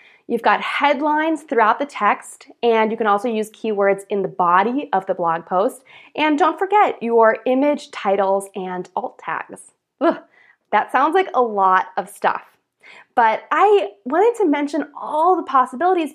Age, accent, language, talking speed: 20-39, American, English, 160 wpm